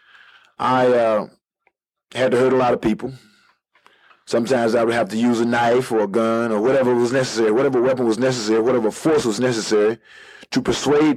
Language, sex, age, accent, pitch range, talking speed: English, male, 30-49, American, 115-140 Hz, 185 wpm